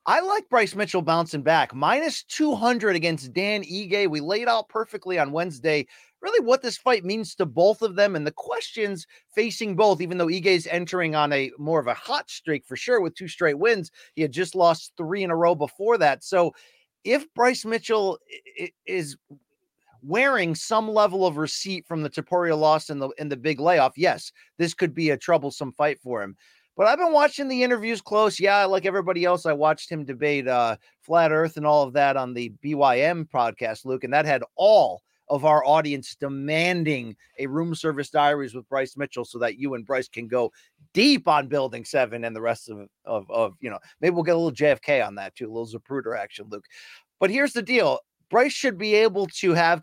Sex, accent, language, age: male, American, English, 30-49